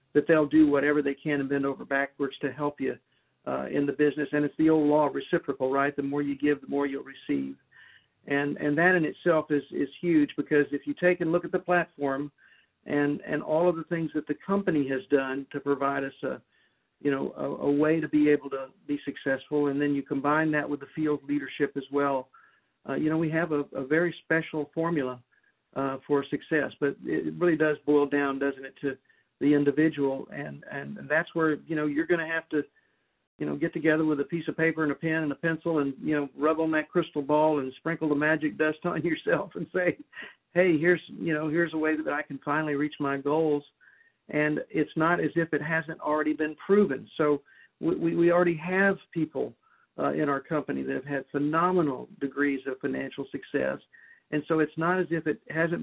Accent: American